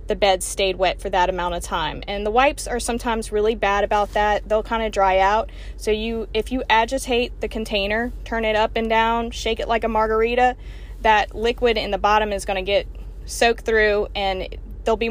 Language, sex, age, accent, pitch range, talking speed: English, female, 20-39, American, 195-235 Hz, 215 wpm